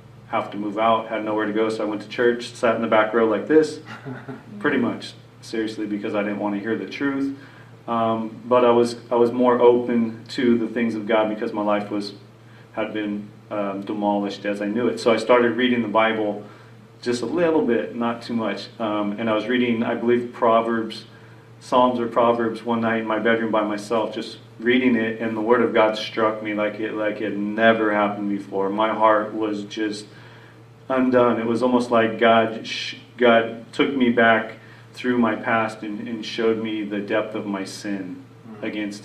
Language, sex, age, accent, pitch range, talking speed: English, male, 40-59, American, 105-120 Hz, 205 wpm